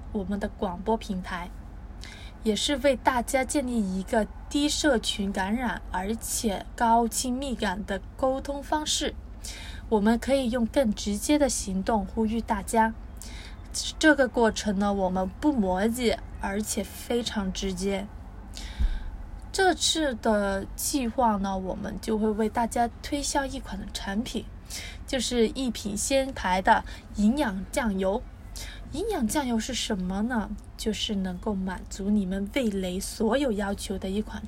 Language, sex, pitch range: Chinese, female, 195-265 Hz